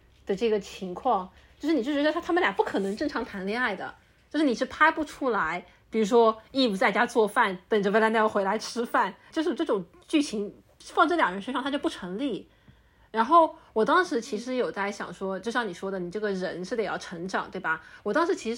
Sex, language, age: female, Chinese, 30-49